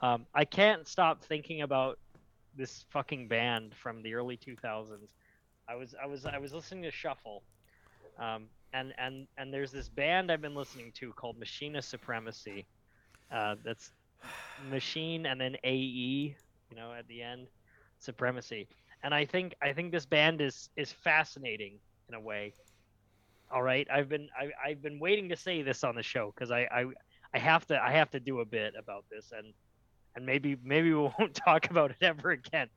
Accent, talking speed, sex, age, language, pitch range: American, 185 wpm, male, 20-39, English, 110-150 Hz